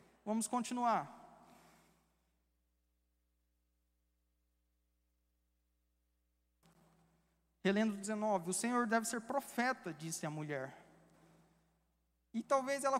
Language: Portuguese